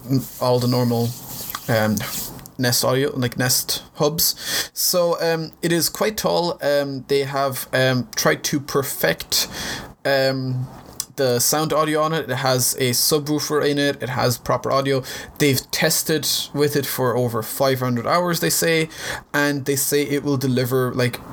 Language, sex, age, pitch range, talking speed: English, male, 20-39, 125-145 Hz, 155 wpm